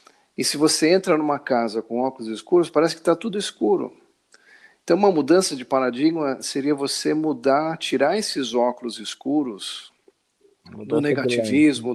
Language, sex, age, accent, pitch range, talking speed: Portuguese, male, 50-69, Brazilian, 115-150 Hz, 140 wpm